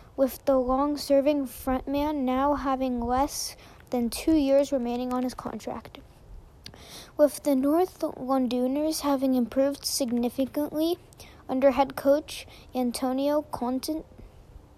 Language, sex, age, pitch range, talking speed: English, female, 20-39, 245-290 Hz, 105 wpm